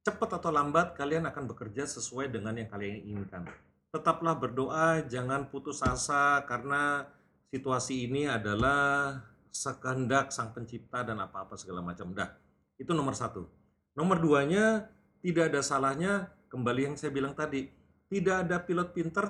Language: Indonesian